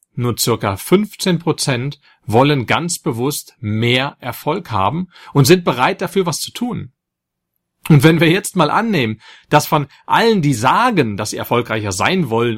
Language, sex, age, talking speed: German, male, 40-59, 155 wpm